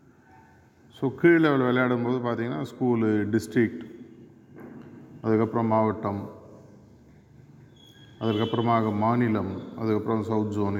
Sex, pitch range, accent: male, 115-135 Hz, native